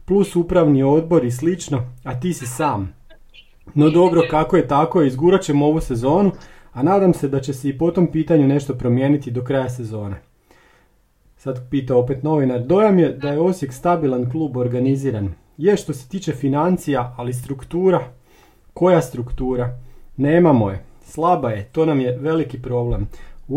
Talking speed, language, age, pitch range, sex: 165 wpm, Croatian, 40-59, 130-165 Hz, male